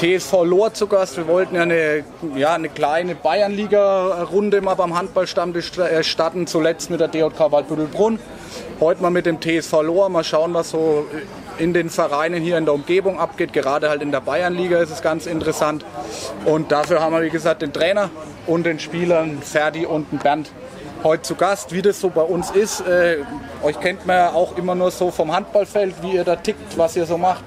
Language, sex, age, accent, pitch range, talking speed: German, male, 30-49, German, 155-185 Hz, 200 wpm